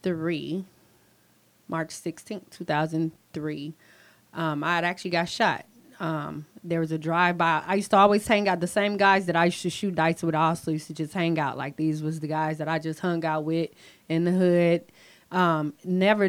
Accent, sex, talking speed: American, female, 190 wpm